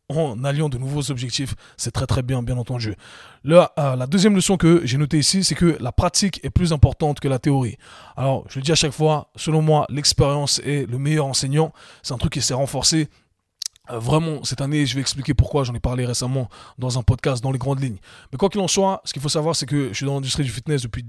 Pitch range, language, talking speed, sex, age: 130-155 Hz, French, 250 wpm, male, 20-39